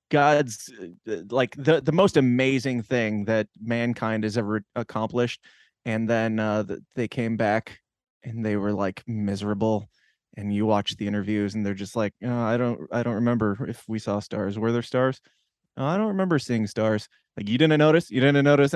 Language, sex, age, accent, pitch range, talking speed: English, male, 20-39, American, 110-140 Hz, 180 wpm